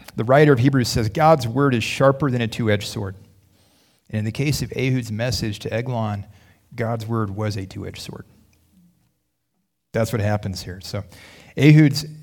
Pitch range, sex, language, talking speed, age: 105-120 Hz, male, English, 165 wpm, 30-49